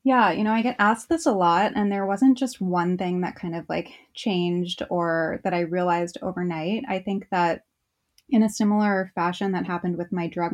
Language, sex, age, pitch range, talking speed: English, female, 20-39, 175-215 Hz, 210 wpm